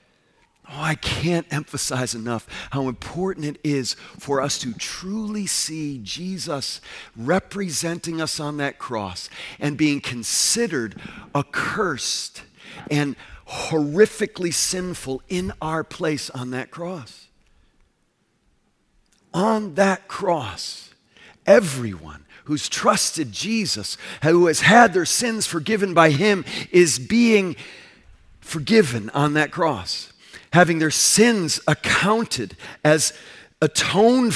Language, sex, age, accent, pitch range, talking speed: English, male, 50-69, American, 150-200 Hz, 105 wpm